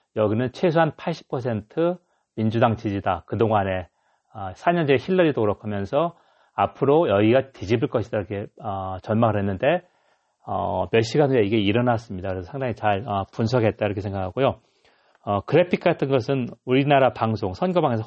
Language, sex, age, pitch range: Korean, male, 40-59, 100-135 Hz